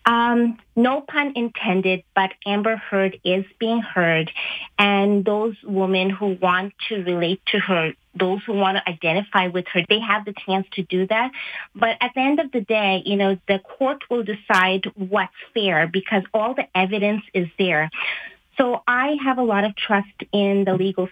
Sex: female